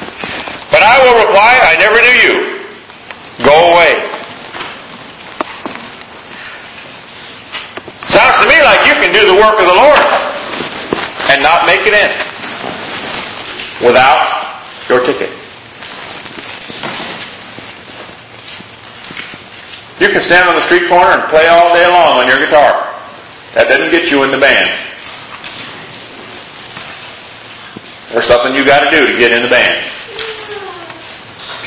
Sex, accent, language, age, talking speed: male, American, English, 50-69, 120 wpm